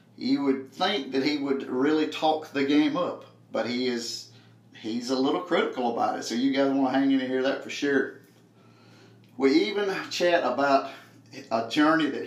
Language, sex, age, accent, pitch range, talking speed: English, male, 40-59, American, 130-150 Hz, 185 wpm